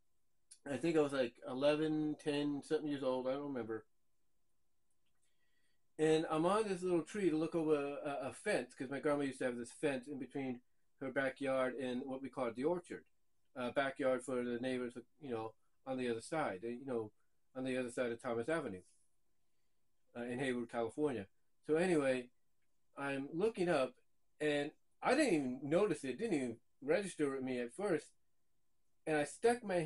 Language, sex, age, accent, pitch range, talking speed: English, male, 40-59, American, 125-155 Hz, 180 wpm